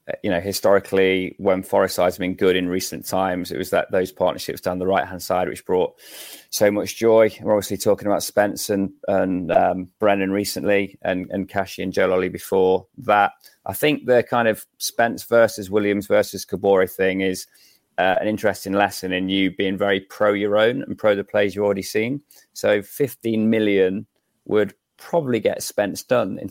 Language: English